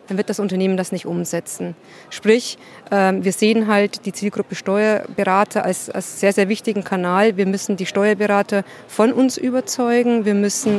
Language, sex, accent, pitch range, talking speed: German, female, German, 200-225 Hz, 160 wpm